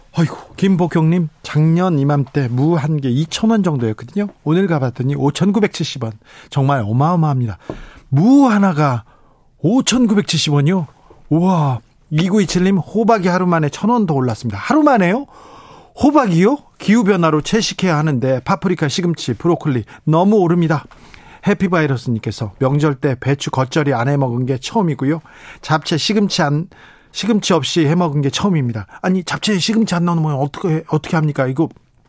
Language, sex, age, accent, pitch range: Korean, male, 40-59, native, 135-180 Hz